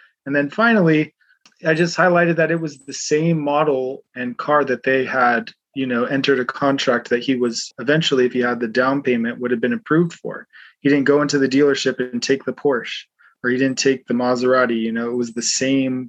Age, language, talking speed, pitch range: 20-39, English, 220 wpm, 120-145 Hz